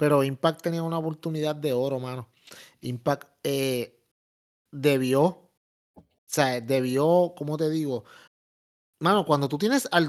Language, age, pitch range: Spanish, 30-49, 155-230 Hz